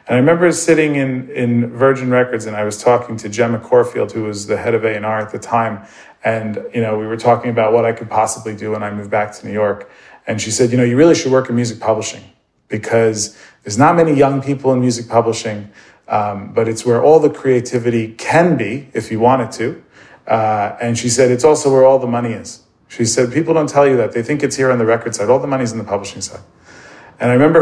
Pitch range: 105-125 Hz